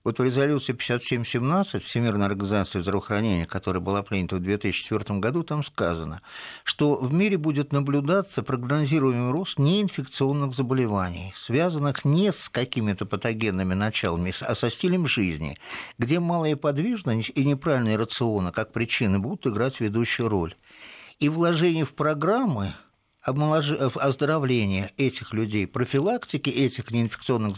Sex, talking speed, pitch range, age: male, 120 wpm, 110-155 Hz, 50-69